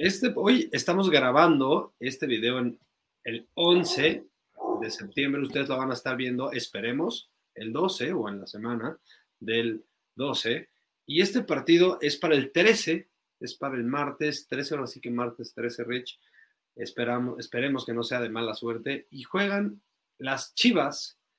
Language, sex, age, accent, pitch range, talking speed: Spanish, male, 30-49, Mexican, 115-150 Hz, 155 wpm